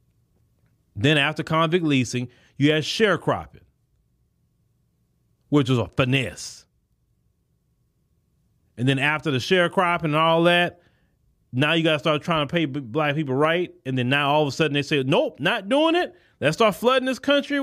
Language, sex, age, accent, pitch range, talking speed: English, male, 30-49, American, 130-200 Hz, 165 wpm